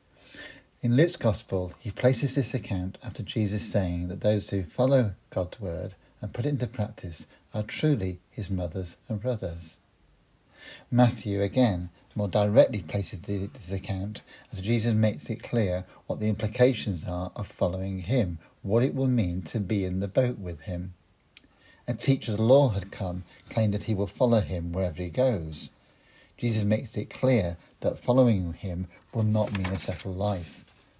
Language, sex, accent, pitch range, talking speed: English, male, British, 95-115 Hz, 165 wpm